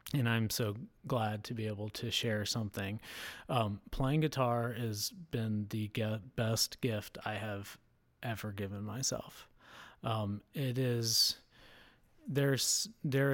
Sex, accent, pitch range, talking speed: male, American, 105-125 Hz, 120 wpm